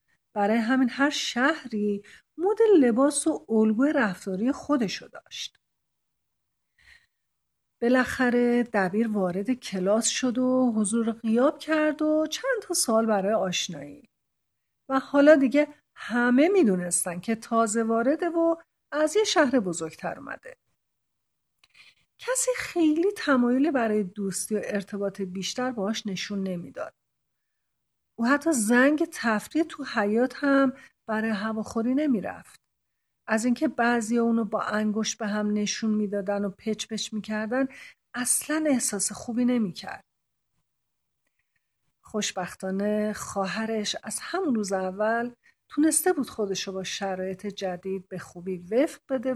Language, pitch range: Persian, 205-285 Hz